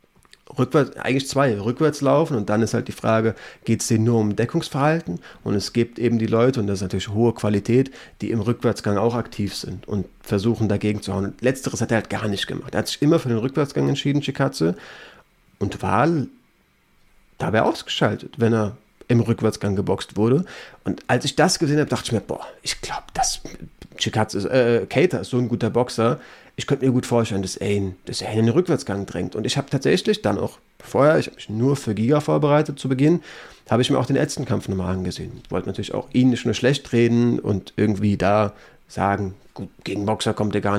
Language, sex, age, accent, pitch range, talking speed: German, male, 30-49, German, 105-130 Hz, 210 wpm